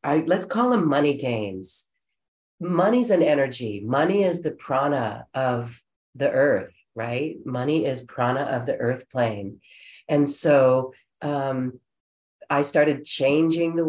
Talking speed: 135 wpm